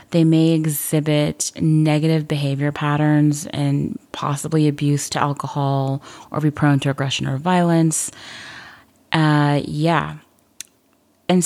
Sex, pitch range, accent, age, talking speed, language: female, 145-170 Hz, American, 30-49, 110 wpm, English